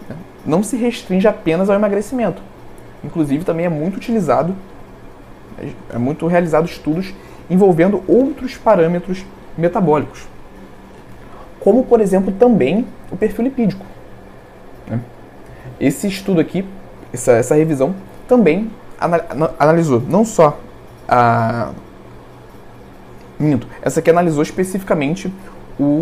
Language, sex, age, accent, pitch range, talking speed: Portuguese, male, 20-39, Brazilian, 155-215 Hz, 100 wpm